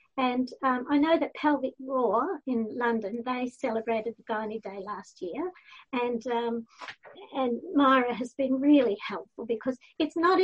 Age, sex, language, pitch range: 50-69, female, English, 235-290 Hz